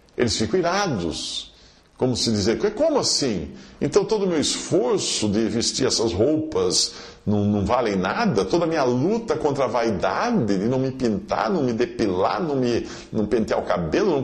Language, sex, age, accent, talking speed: Portuguese, male, 50-69, Brazilian, 175 wpm